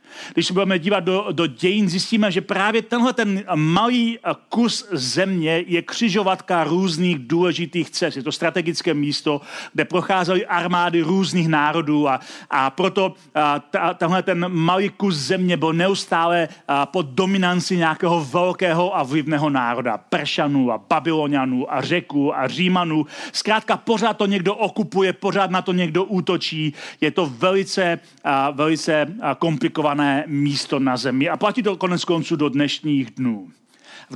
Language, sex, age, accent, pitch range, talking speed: Czech, male, 40-59, native, 155-190 Hz, 145 wpm